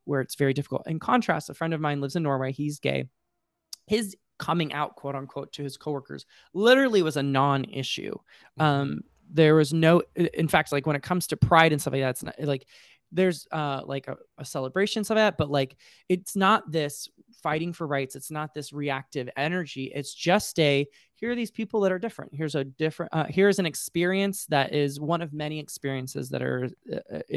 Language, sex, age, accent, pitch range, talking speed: English, male, 20-39, American, 140-175 Hz, 200 wpm